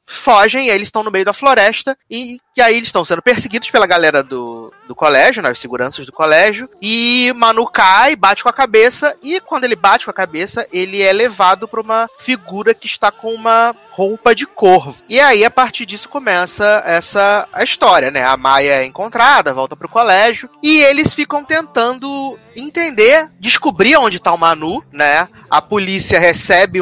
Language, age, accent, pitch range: Portuguese, 20-39, Brazilian, 165-240 Hz